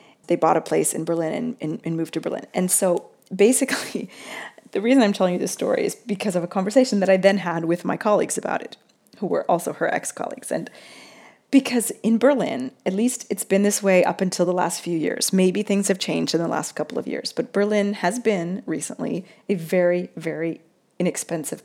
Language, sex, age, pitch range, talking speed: English, female, 30-49, 180-240 Hz, 210 wpm